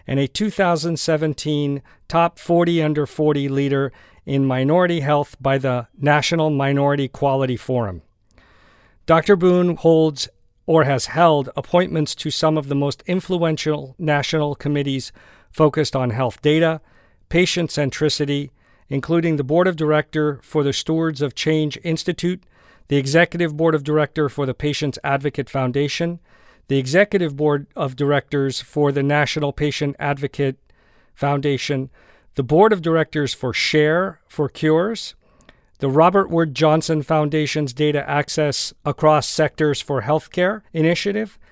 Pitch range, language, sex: 140-165 Hz, English, male